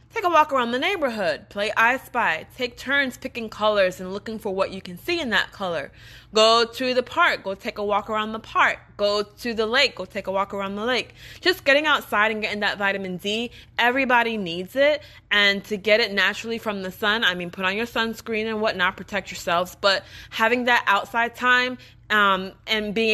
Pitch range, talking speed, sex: 190-245 Hz, 215 wpm, female